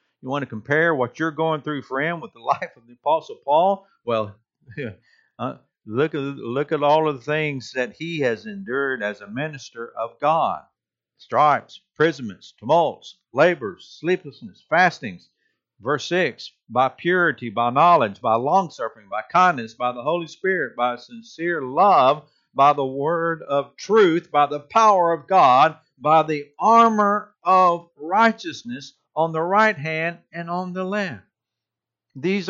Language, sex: English, male